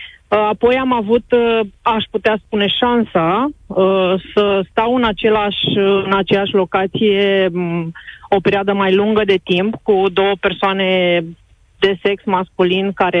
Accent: native